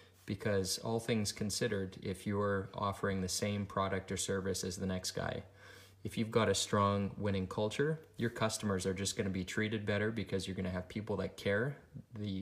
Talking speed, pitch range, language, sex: 190 wpm, 95-105 Hz, English, male